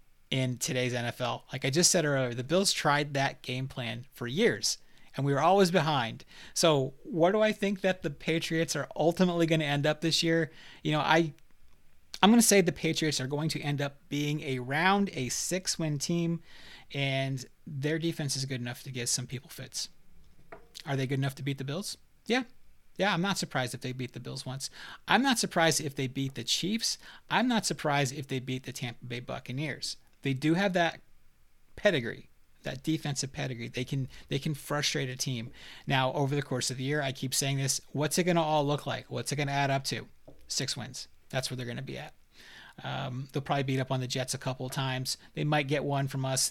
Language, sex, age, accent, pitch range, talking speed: English, male, 30-49, American, 130-160 Hz, 225 wpm